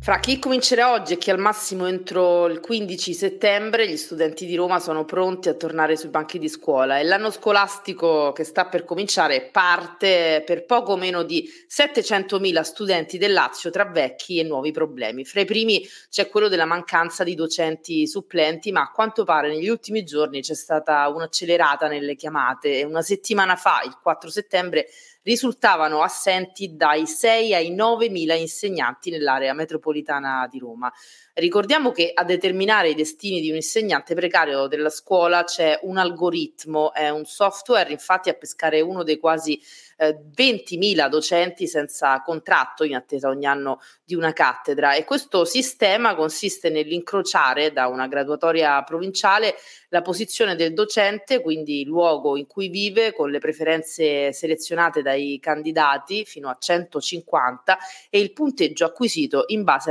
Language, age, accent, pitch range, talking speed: Italian, 30-49, native, 155-200 Hz, 155 wpm